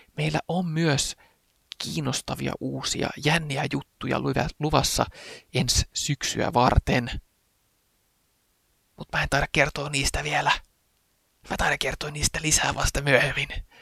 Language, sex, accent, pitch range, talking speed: Finnish, male, native, 125-170 Hz, 110 wpm